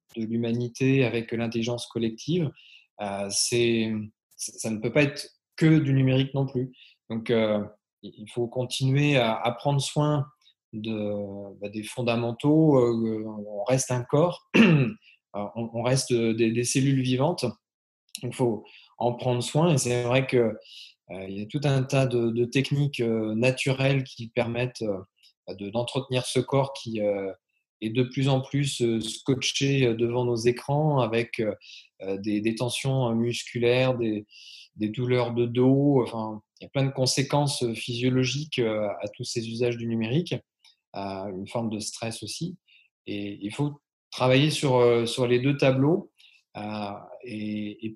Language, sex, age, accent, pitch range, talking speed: English, male, 20-39, French, 110-135 Hz, 135 wpm